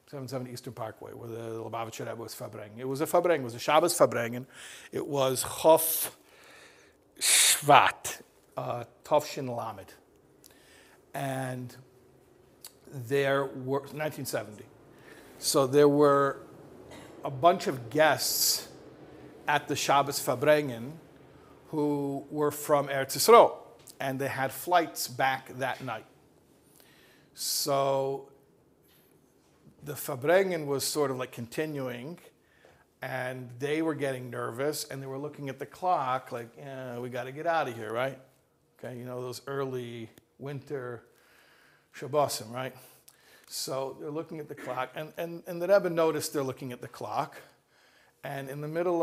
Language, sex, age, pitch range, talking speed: English, male, 50-69, 125-150 Hz, 135 wpm